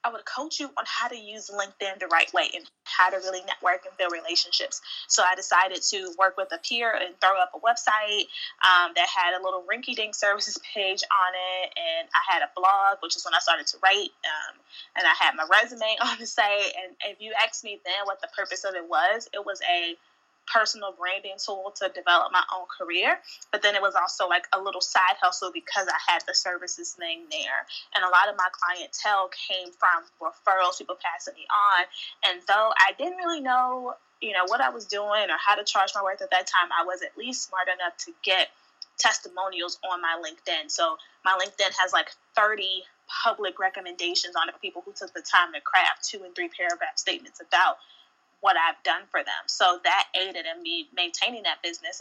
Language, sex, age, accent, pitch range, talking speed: English, female, 10-29, American, 180-230 Hz, 215 wpm